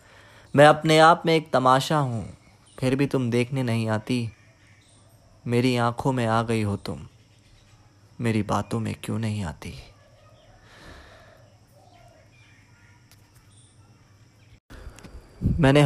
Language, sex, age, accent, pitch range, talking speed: Hindi, male, 20-39, native, 100-120 Hz, 100 wpm